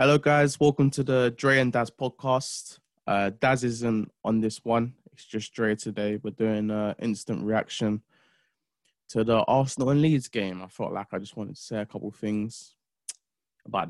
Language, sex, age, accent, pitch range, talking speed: English, male, 20-39, British, 105-140 Hz, 185 wpm